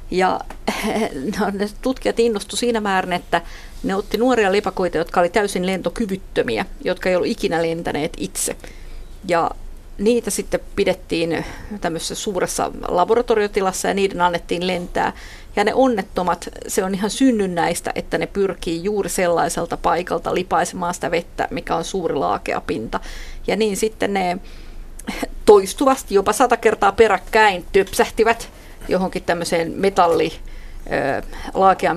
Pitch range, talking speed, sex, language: 180-225 Hz, 125 wpm, female, Finnish